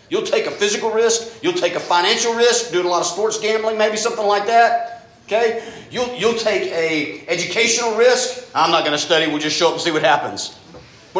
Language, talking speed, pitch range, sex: English, 220 wpm, 150-235 Hz, male